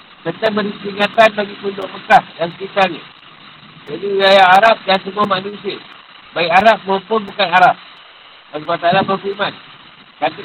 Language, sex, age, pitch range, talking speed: Malay, male, 50-69, 195-215 Hz, 130 wpm